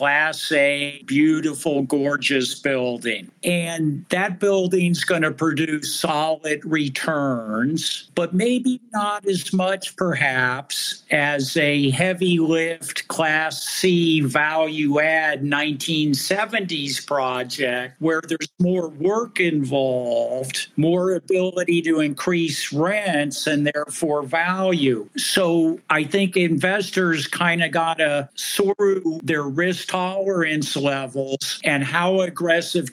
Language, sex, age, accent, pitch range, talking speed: English, male, 50-69, American, 145-180 Hz, 105 wpm